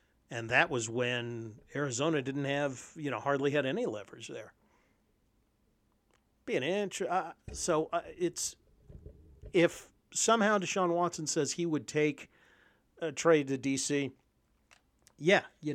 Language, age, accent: English, 50-69, American